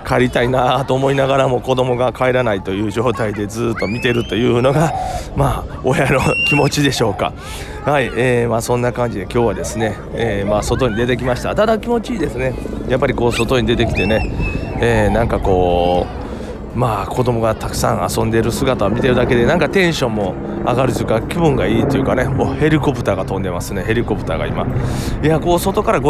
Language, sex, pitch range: Japanese, male, 110-130 Hz